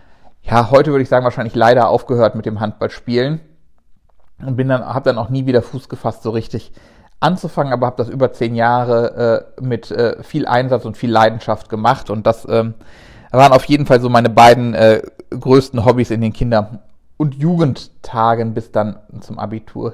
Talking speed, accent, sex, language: 180 wpm, German, male, German